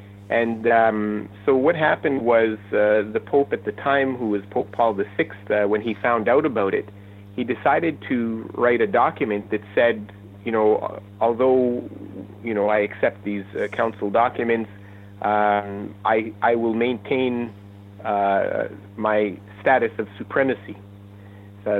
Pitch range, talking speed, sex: 100-120 Hz, 150 wpm, male